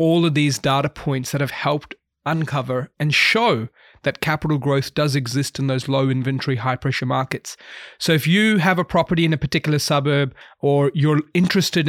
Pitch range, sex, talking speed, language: 140-165 Hz, male, 180 wpm, English